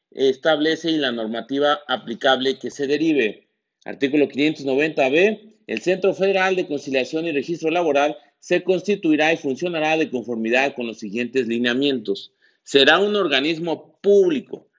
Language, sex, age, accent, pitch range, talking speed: Spanish, male, 40-59, Mexican, 135-185 Hz, 130 wpm